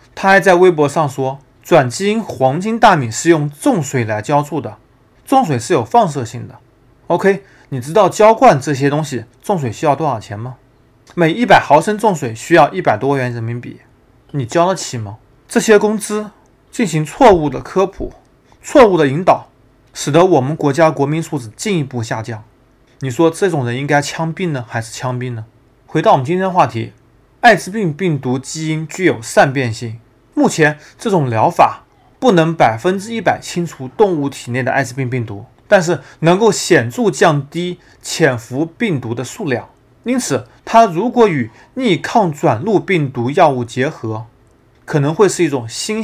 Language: Chinese